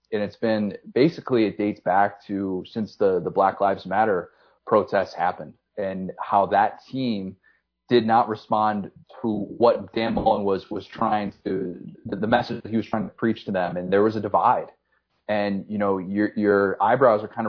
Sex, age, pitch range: male, 30-49, 100-115 Hz